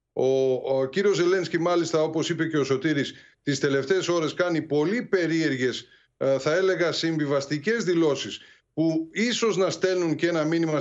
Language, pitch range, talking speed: Greek, 135-170 Hz, 145 wpm